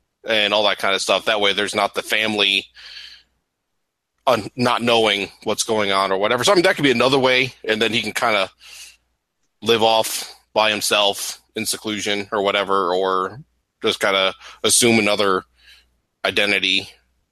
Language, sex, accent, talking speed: English, male, American, 165 wpm